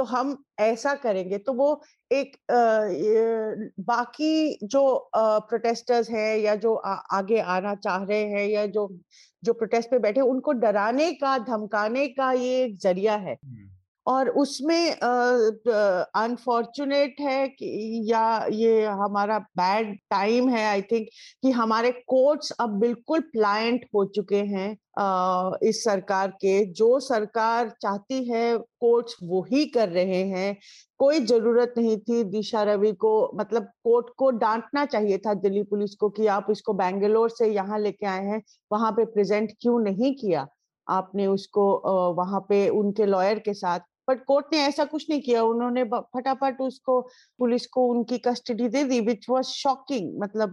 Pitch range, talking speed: 210-265 Hz, 155 wpm